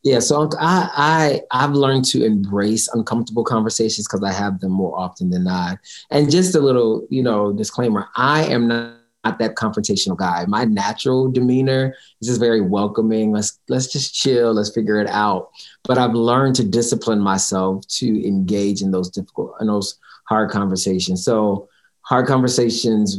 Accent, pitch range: American, 100-125 Hz